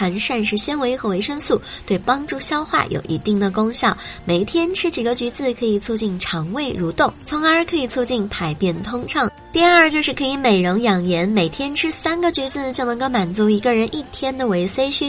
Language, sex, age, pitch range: Chinese, male, 20-39, 200-275 Hz